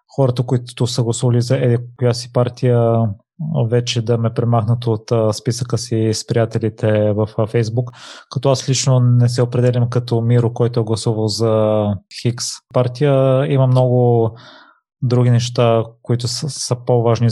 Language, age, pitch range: Bulgarian, 20-39, 115-125 Hz